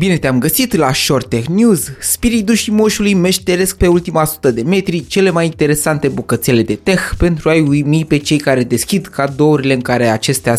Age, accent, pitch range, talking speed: 20-39, native, 125-180 Hz, 185 wpm